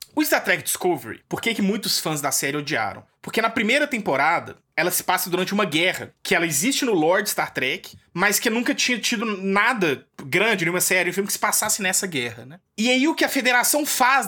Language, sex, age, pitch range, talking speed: English, male, 20-39, 165-235 Hz, 225 wpm